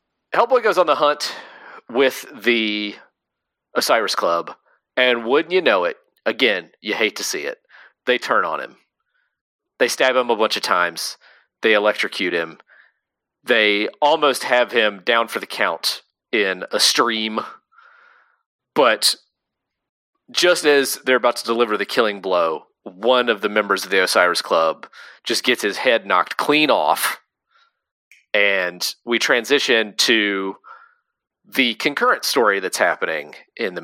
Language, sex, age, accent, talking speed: English, male, 40-59, American, 145 wpm